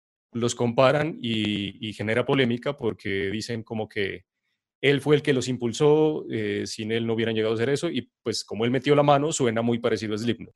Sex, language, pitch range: male, Spanish, 110-130 Hz